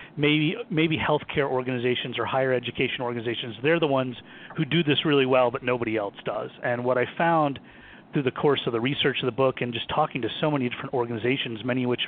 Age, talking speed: 30-49, 220 wpm